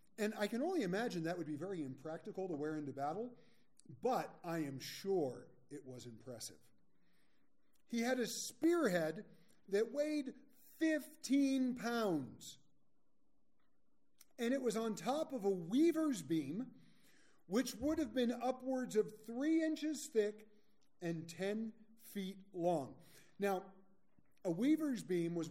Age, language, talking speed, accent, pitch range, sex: 40-59, English, 130 wpm, American, 165-260 Hz, male